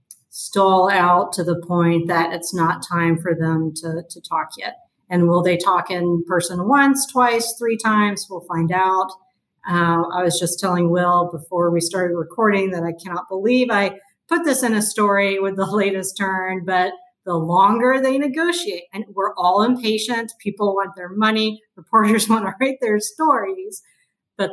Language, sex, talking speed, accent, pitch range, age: English, female, 175 wpm, American, 175-215 Hz, 40-59